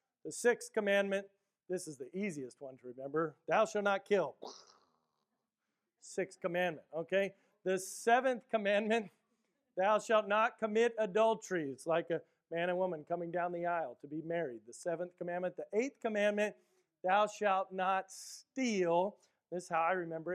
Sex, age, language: male, 40-59, English